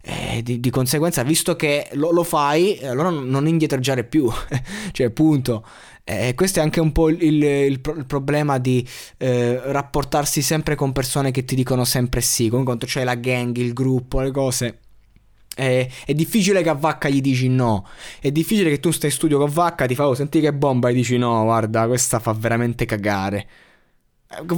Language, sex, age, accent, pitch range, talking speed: Italian, male, 20-39, native, 115-140 Hz, 200 wpm